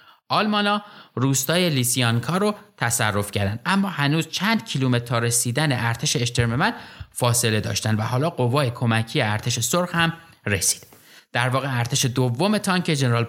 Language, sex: Persian, male